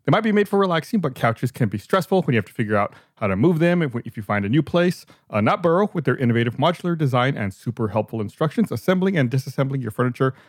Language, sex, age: English, male, 40-59